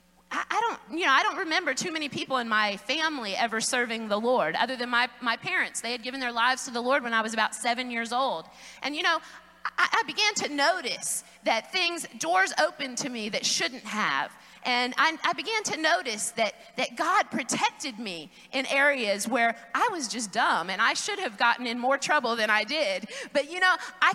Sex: female